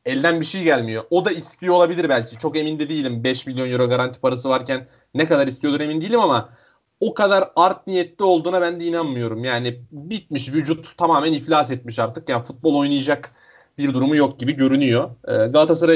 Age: 30-49